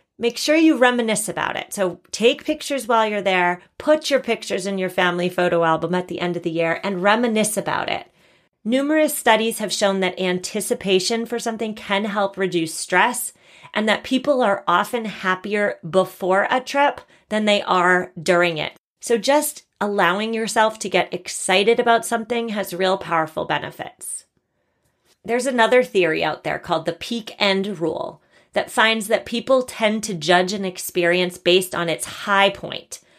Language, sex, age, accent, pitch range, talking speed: English, female, 30-49, American, 180-225 Hz, 170 wpm